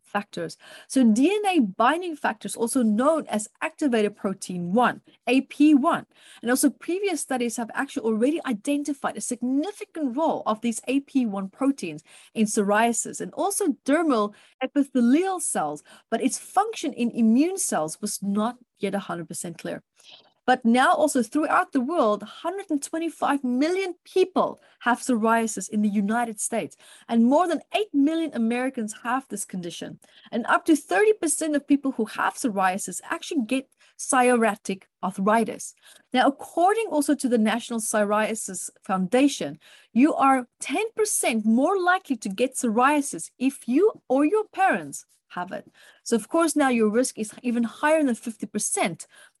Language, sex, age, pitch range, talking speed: English, female, 30-49, 220-305 Hz, 140 wpm